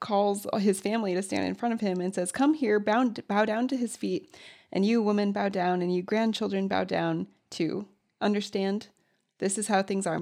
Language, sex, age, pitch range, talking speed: English, female, 20-39, 185-225 Hz, 205 wpm